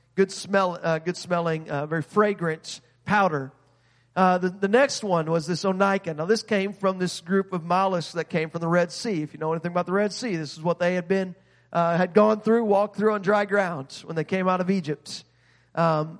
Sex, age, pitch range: male, 40-59, 160-195 Hz